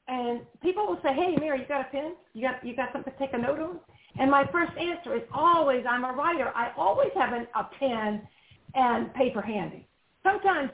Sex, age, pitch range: female, 50-69, 220-295 Hz